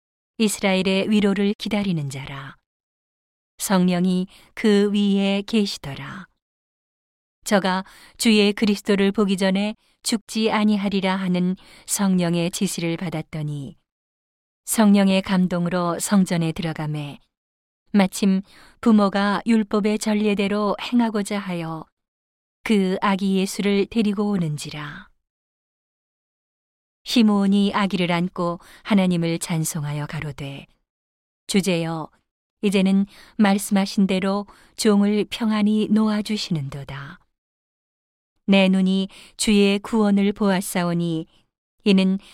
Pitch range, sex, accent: 175-205 Hz, female, native